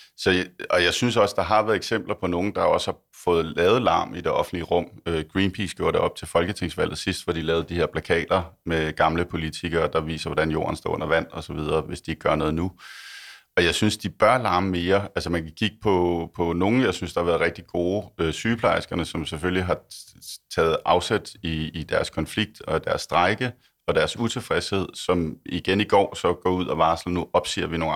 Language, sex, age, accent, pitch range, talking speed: Danish, male, 30-49, native, 80-100 Hz, 215 wpm